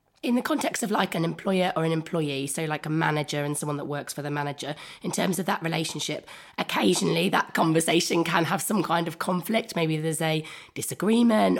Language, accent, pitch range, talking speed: English, British, 150-185 Hz, 200 wpm